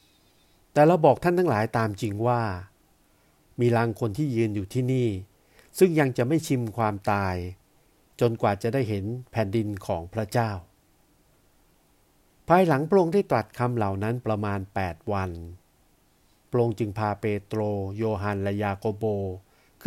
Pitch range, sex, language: 100-125 Hz, male, Thai